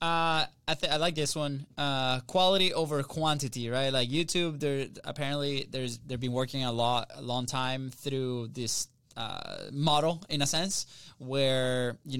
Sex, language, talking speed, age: male, English, 165 wpm, 20-39